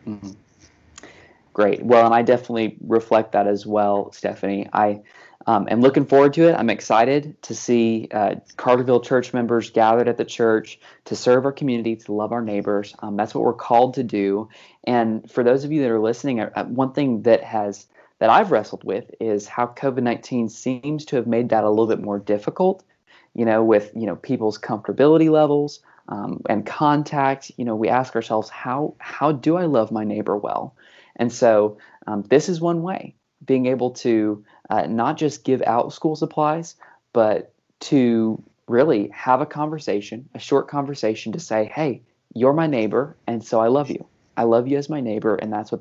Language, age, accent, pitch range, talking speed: English, 20-39, American, 110-140 Hz, 190 wpm